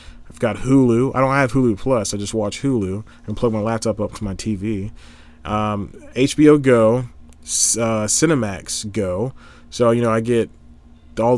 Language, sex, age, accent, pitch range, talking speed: English, male, 20-39, American, 90-120 Hz, 170 wpm